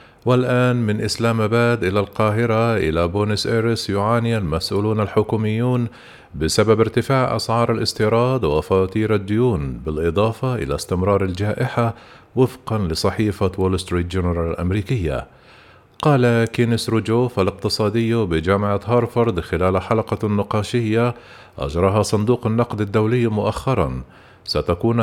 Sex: male